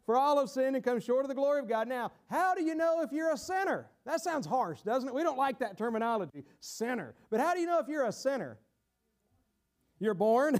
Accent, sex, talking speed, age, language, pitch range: American, male, 245 wpm, 40-59, English, 210-310 Hz